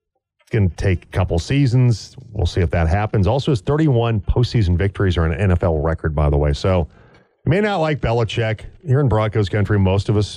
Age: 40-59